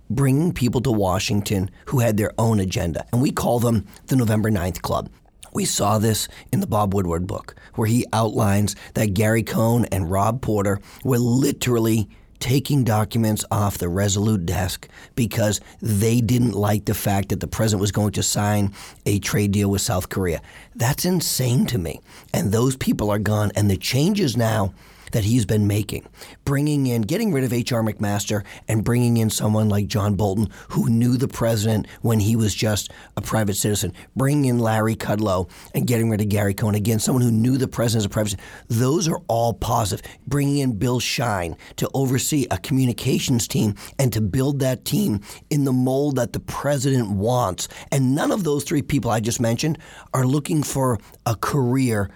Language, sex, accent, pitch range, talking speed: English, male, American, 105-125 Hz, 185 wpm